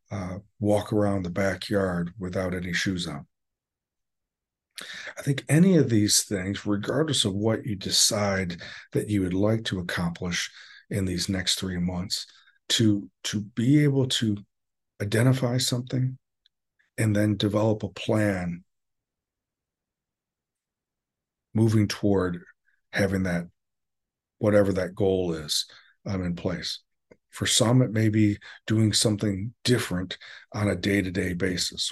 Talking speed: 125 wpm